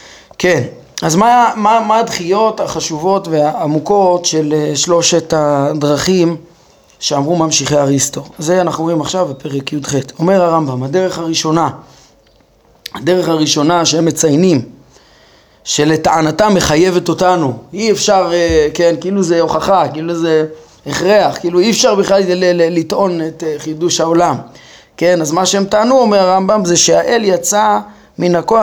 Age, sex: 30-49, male